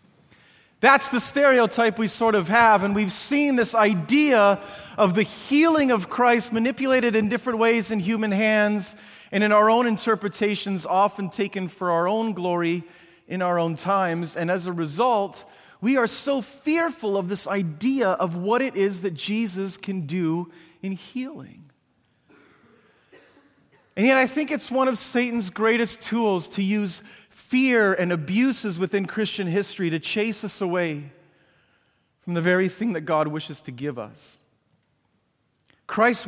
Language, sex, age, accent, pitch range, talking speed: English, male, 30-49, American, 180-230 Hz, 155 wpm